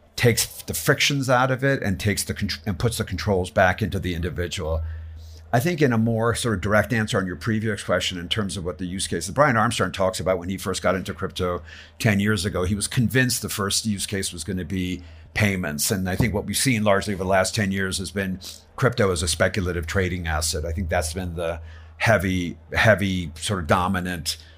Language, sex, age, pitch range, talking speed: English, male, 50-69, 90-105 Hz, 220 wpm